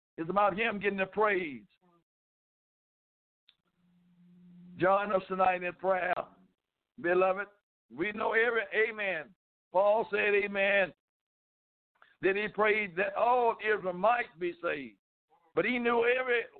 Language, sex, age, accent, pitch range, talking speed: English, male, 60-79, American, 170-225 Hz, 120 wpm